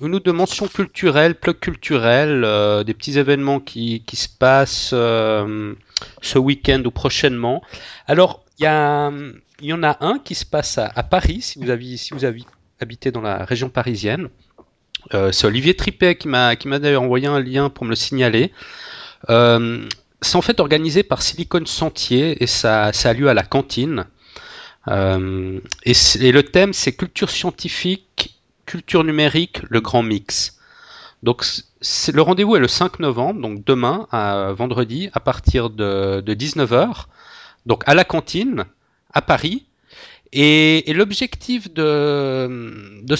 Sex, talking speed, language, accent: male, 165 wpm, French, French